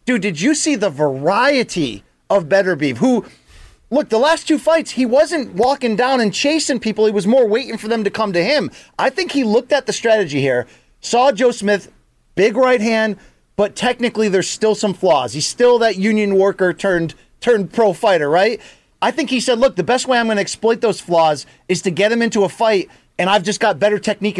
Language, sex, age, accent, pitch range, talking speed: English, male, 30-49, American, 200-250 Hz, 220 wpm